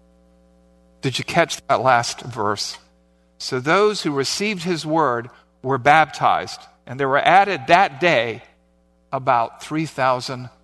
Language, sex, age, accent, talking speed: English, male, 50-69, American, 125 wpm